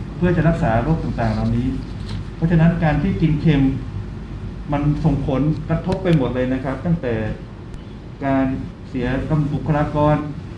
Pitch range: 125-165 Hz